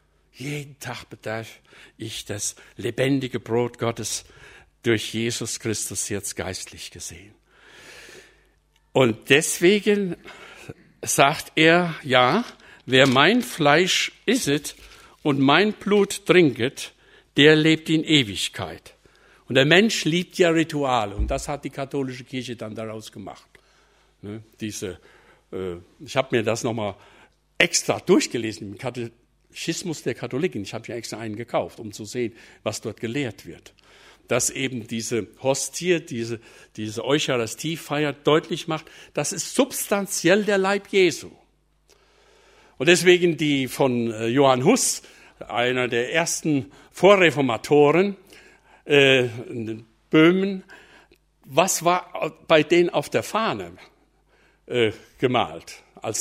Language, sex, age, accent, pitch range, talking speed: German, male, 60-79, German, 115-175 Hz, 115 wpm